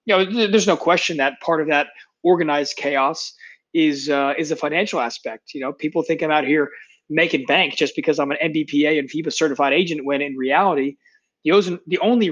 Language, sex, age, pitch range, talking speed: English, male, 20-39, 145-175 Hz, 195 wpm